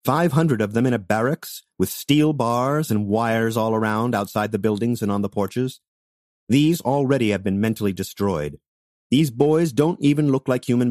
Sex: male